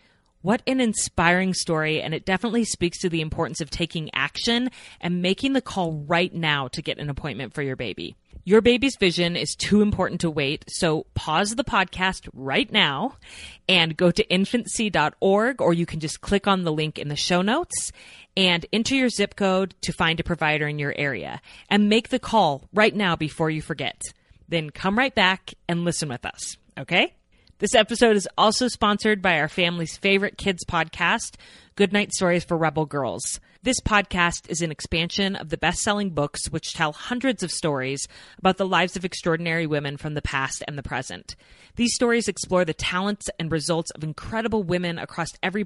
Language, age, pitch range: English, 30-49, 160-205 Hz